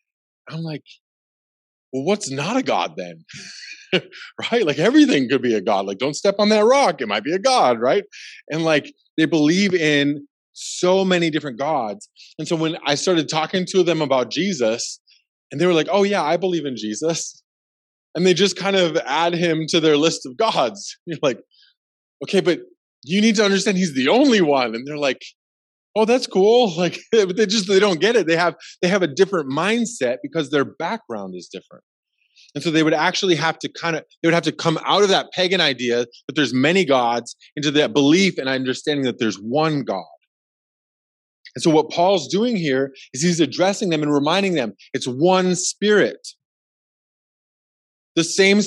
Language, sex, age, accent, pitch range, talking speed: English, male, 20-39, American, 145-190 Hz, 190 wpm